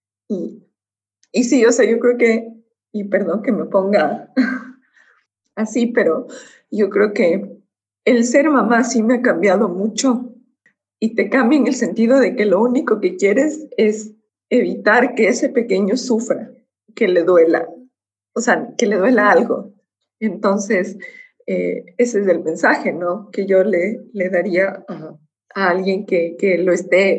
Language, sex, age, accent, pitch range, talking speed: Spanish, female, 20-39, Mexican, 180-250 Hz, 160 wpm